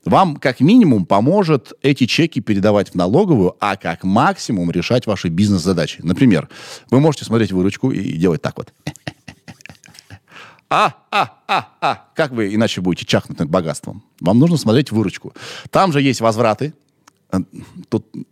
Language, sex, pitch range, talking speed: Russian, male, 95-155 Hz, 140 wpm